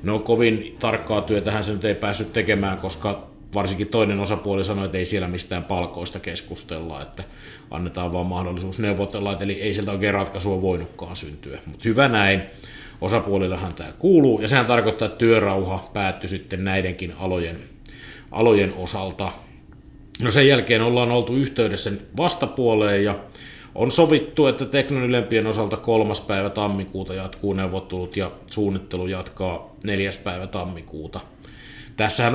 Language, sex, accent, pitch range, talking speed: Finnish, male, native, 95-110 Hz, 140 wpm